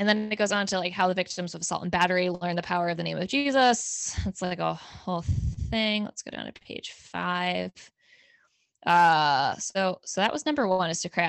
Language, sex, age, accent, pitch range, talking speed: English, female, 10-29, American, 175-210 Hz, 230 wpm